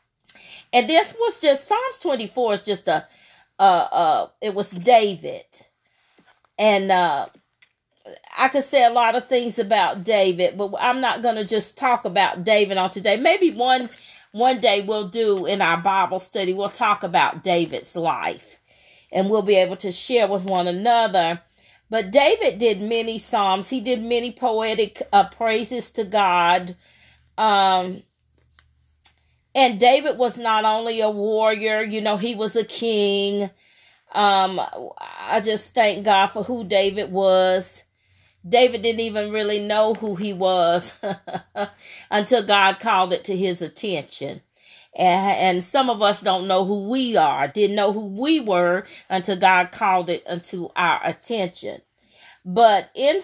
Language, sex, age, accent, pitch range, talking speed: English, female, 40-59, American, 185-235 Hz, 150 wpm